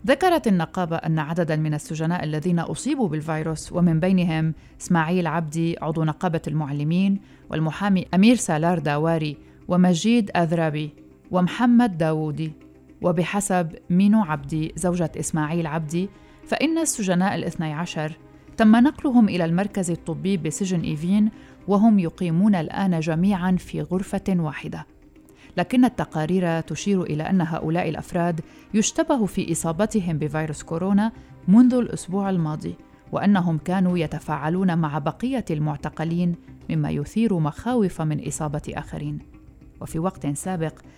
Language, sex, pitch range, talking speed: Arabic, female, 155-195 Hz, 115 wpm